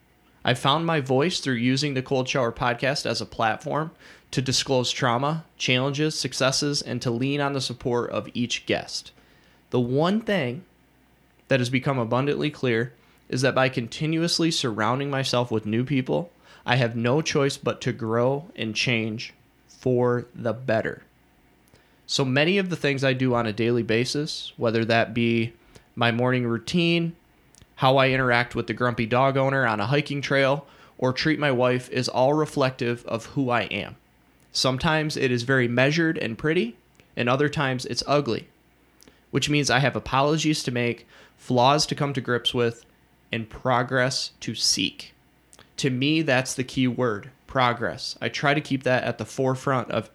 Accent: American